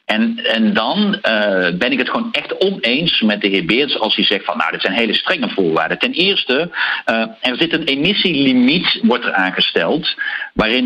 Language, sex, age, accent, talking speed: Dutch, male, 50-69, Dutch, 195 wpm